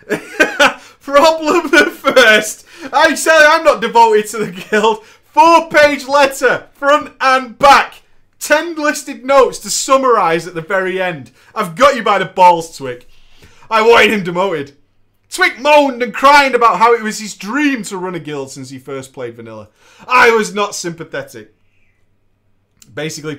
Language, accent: English, British